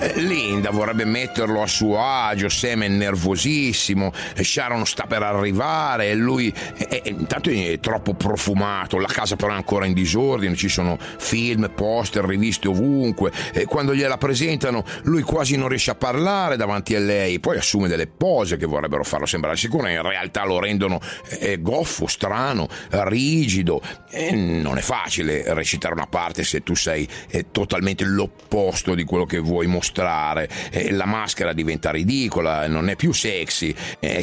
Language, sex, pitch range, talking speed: Italian, male, 90-110 Hz, 165 wpm